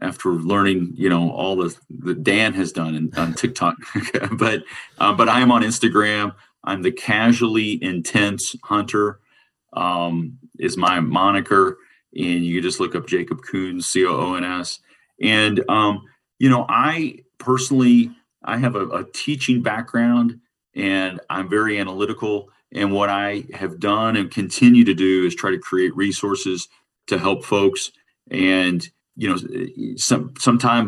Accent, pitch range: American, 95-115 Hz